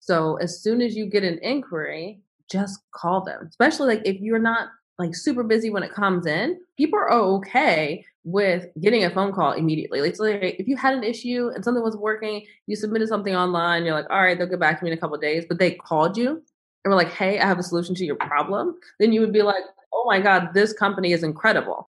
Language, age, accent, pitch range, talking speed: English, 20-39, American, 180-240 Hz, 245 wpm